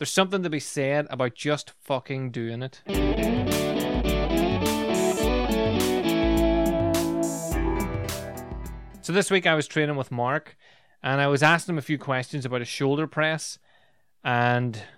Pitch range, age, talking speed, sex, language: 125-150 Hz, 20-39, 125 wpm, male, English